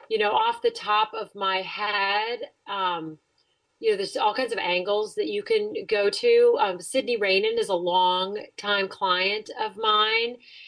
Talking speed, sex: 175 wpm, female